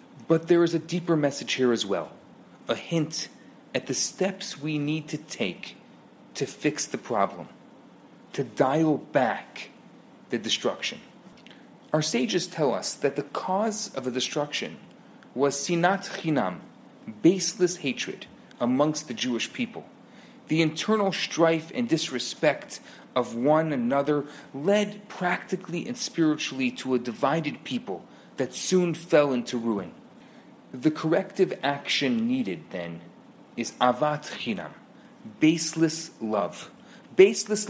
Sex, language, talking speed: male, English, 125 wpm